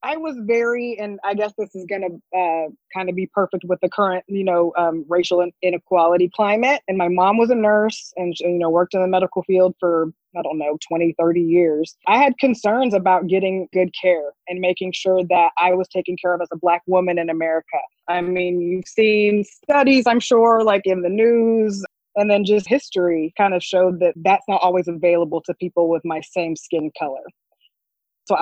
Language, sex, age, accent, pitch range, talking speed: English, female, 20-39, American, 175-200 Hz, 205 wpm